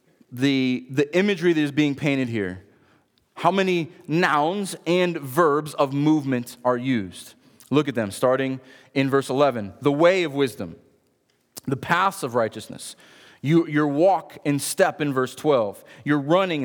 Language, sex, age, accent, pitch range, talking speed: English, male, 30-49, American, 130-170 Hz, 150 wpm